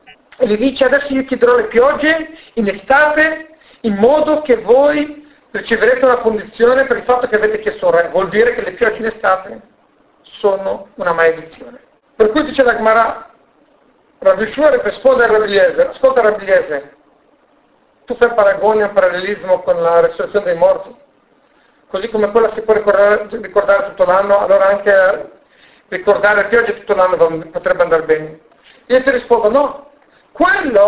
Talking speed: 155 wpm